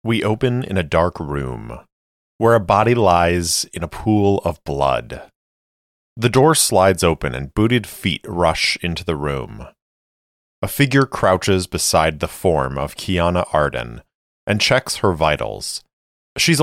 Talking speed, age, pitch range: 145 wpm, 30-49, 70-105 Hz